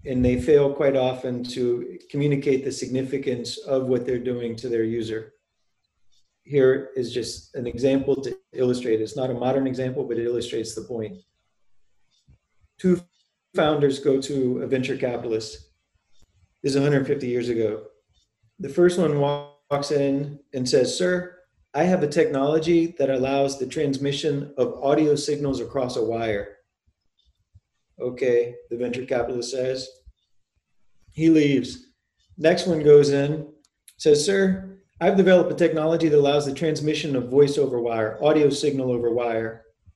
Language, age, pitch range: English, 40-59, 120-150 Hz